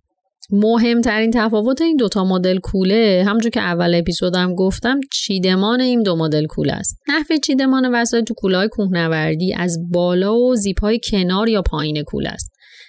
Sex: female